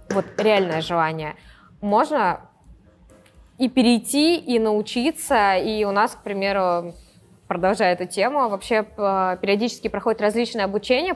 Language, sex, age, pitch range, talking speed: Russian, female, 20-39, 190-245 Hz, 115 wpm